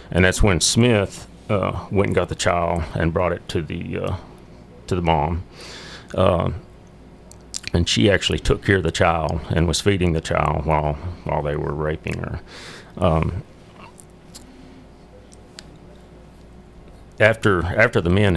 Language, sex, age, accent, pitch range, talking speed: English, male, 40-59, American, 80-95 Hz, 145 wpm